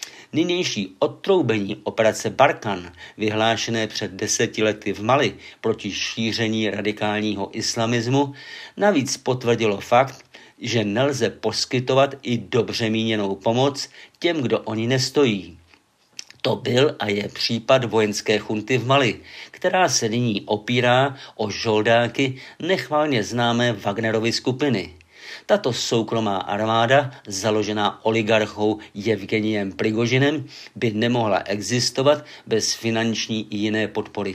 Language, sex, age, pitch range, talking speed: Czech, male, 50-69, 110-130 Hz, 110 wpm